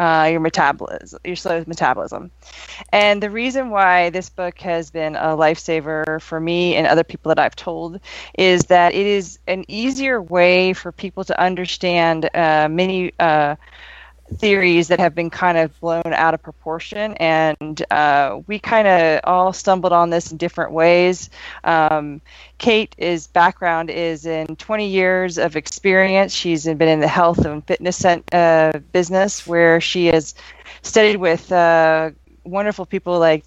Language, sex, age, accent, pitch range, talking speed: English, female, 20-39, American, 160-185 Hz, 160 wpm